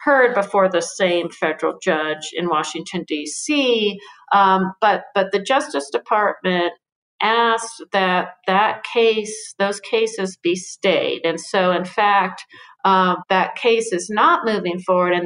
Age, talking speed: 50-69, 140 wpm